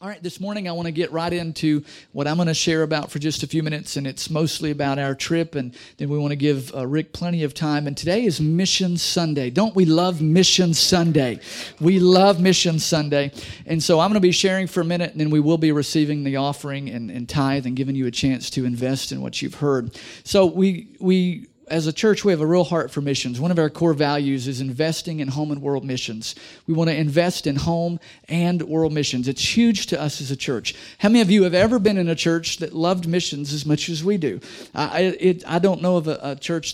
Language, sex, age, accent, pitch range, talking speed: English, male, 50-69, American, 145-180 Hz, 245 wpm